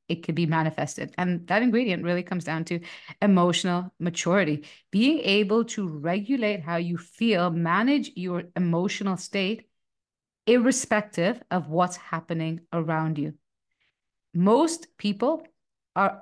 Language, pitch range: English, 170-220 Hz